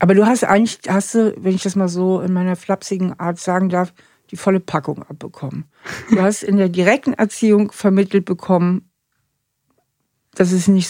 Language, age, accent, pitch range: German, 60-79, German, 165-200 Hz